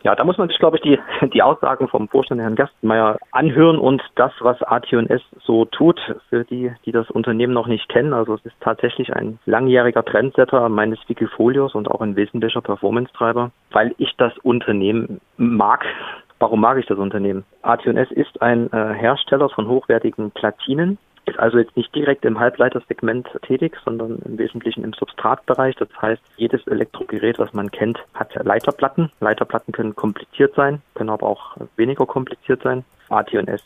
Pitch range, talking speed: 105-125 Hz, 170 wpm